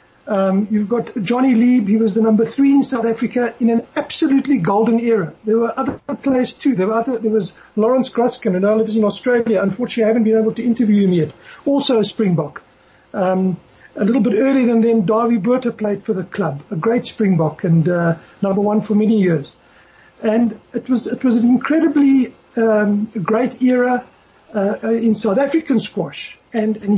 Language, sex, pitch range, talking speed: English, male, 200-245 Hz, 195 wpm